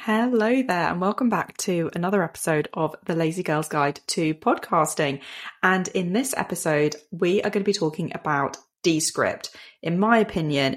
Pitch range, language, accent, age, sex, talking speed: 155-190 Hz, English, British, 20-39, female, 165 wpm